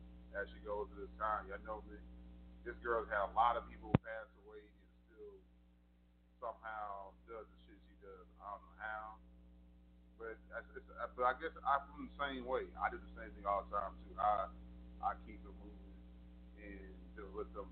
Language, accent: English, American